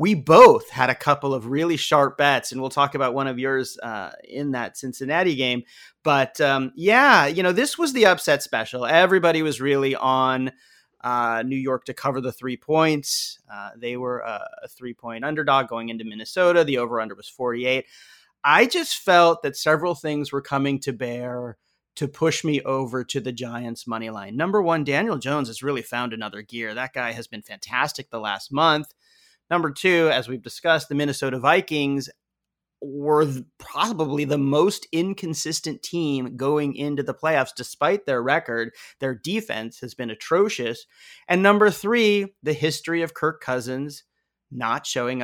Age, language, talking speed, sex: 30-49, English, 170 wpm, male